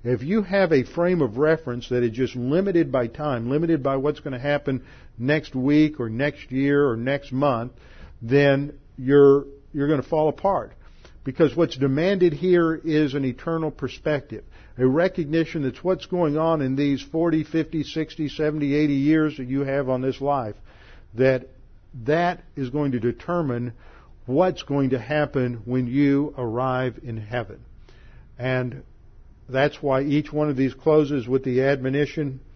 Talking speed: 160 wpm